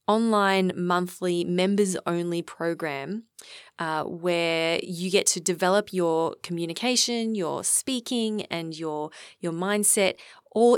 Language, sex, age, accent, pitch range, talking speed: English, female, 20-39, Australian, 165-215 Hz, 110 wpm